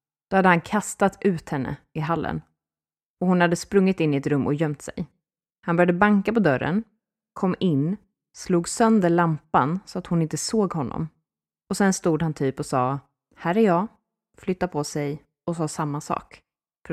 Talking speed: 190 wpm